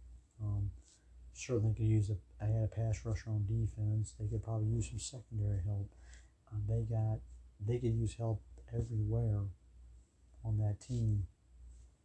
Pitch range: 100-115 Hz